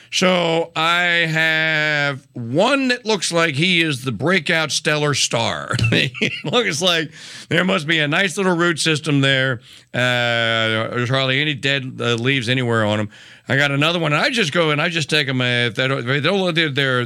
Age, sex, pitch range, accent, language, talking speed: 50-69, male, 120-155 Hz, American, English, 195 wpm